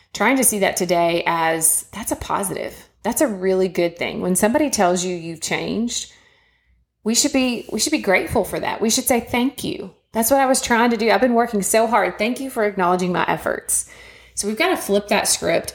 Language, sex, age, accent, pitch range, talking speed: English, female, 30-49, American, 175-225 Hz, 225 wpm